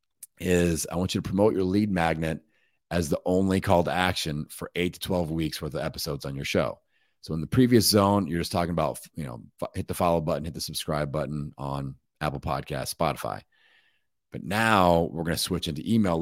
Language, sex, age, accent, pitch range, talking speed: English, male, 40-59, American, 75-90 Hz, 205 wpm